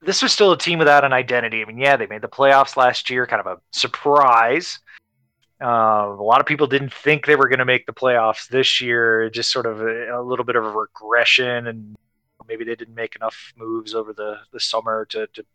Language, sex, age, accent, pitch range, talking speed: English, male, 20-39, American, 110-135 Hz, 230 wpm